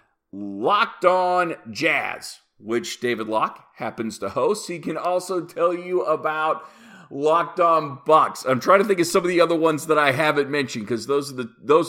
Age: 40-59